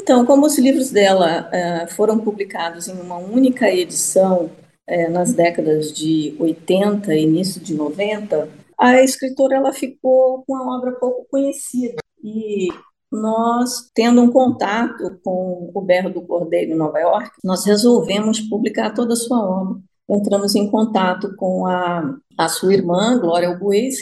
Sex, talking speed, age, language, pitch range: female, 150 wpm, 40-59, Portuguese, 185-255 Hz